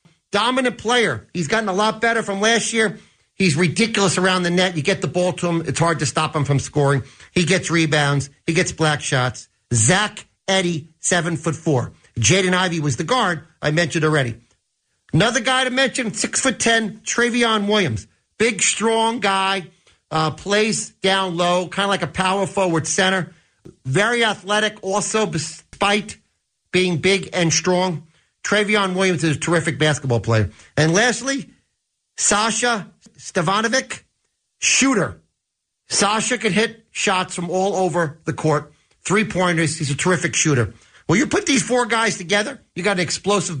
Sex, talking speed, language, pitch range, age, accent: male, 160 wpm, English, 160-215 Hz, 50-69, American